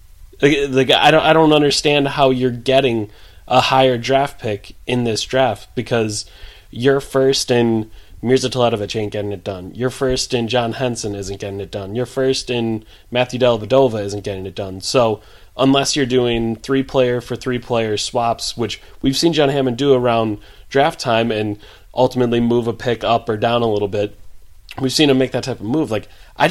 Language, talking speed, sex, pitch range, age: English, 185 wpm, male, 110-130 Hz, 20-39